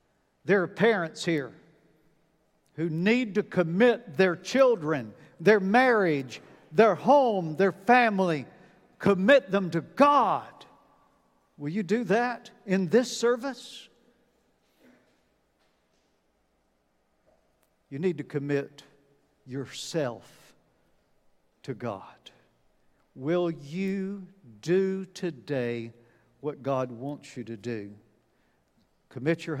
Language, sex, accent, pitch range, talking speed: English, male, American, 145-200 Hz, 95 wpm